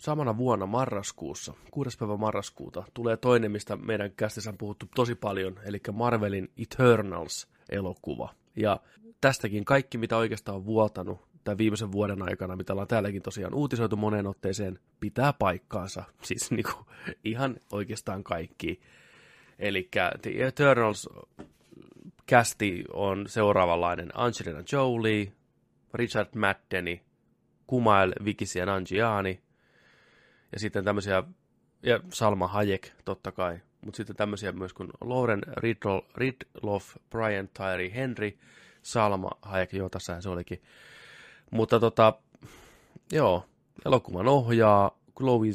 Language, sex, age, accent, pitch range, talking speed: Finnish, male, 20-39, native, 95-115 Hz, 115 wpm